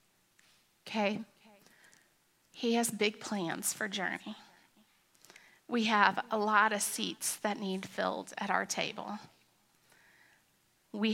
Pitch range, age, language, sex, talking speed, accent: 190-225 Hz, 30-49, English, female, 110 wpm, American